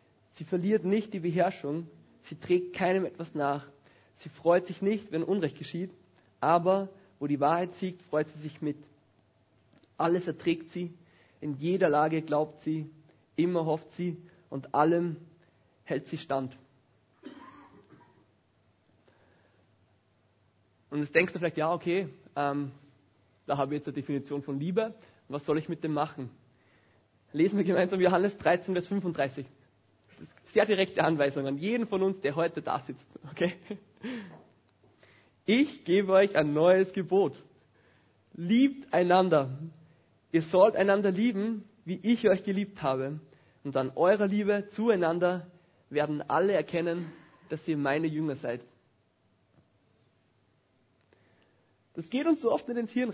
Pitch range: 130-185 Hz